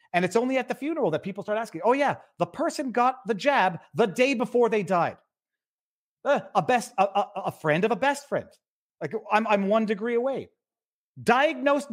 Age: 40-59